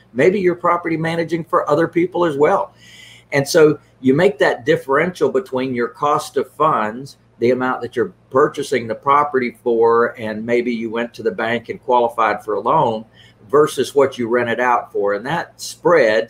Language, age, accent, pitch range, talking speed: English, 50-69, American, 120-175 Hz, 180 wpm